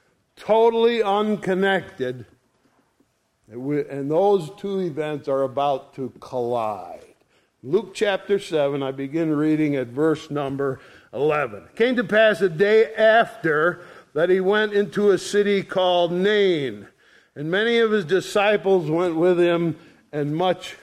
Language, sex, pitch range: English, male, 155-205 Hz